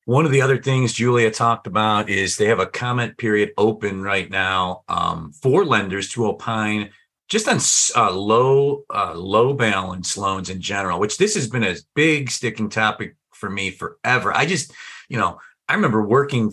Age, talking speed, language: 40-59, 180 wpm, English